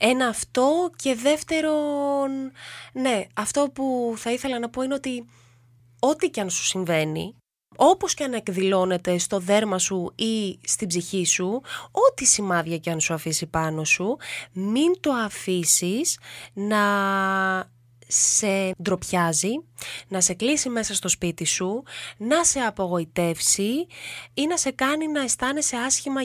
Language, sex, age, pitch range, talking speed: English, female, 20-39, 175-260 Hz, 135 wpm